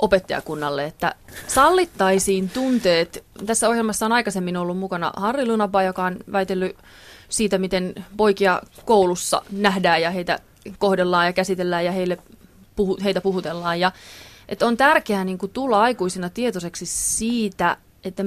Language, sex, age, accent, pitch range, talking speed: Finnish, female, 30-49, native, 175-215 Hz, 115 wpm